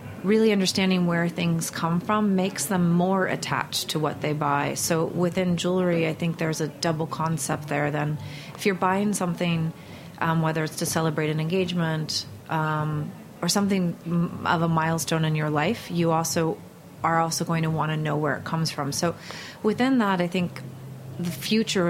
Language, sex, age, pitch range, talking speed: English, female, 30-49, 155-175 Hz, 180 wpm